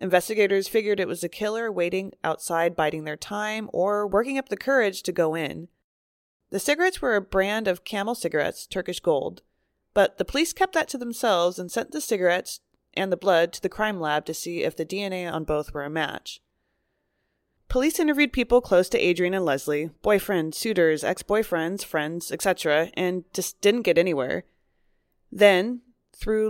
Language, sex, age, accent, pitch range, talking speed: English, female, 20-39, American, 170-230 Hz, 175 wpm